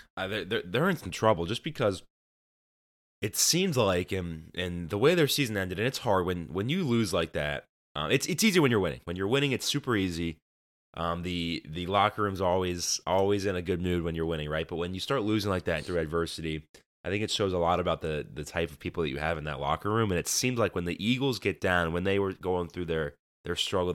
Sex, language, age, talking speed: male, English, 20-39, 255 wpm